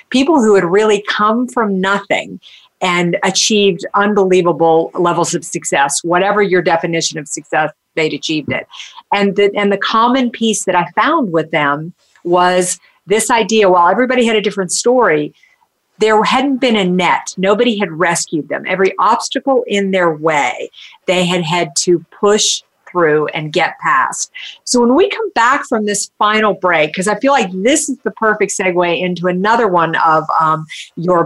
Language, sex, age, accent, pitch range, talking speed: English, female, 50-69, American, 175-220 Hz, 170 wpm